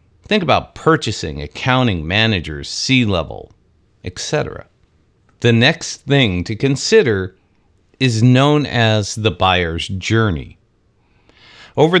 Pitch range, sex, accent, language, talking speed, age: 95-140 Hz, male, American, English, 95 wpm, 50-69